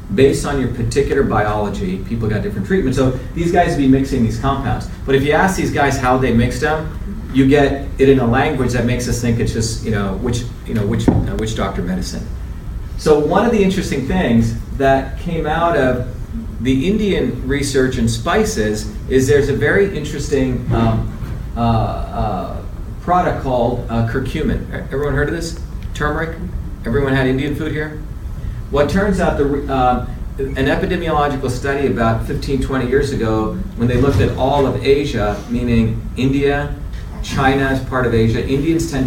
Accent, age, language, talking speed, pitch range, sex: American, 40-59, English, 175 wpm, 110-140 Hz, male